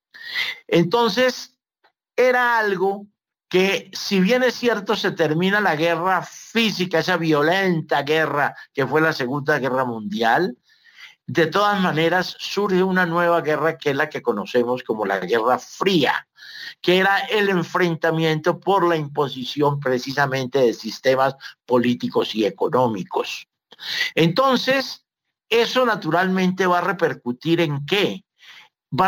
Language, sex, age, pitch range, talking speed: Spanish, male, 60-79, 150-210 Hz, 125 wpm